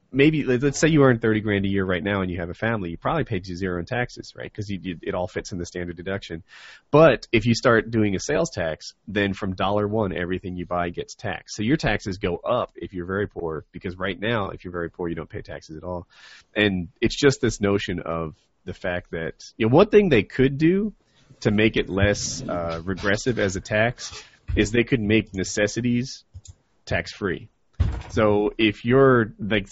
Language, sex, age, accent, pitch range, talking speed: English, male, 30-49, American, 90-110 Hz, 215 wpm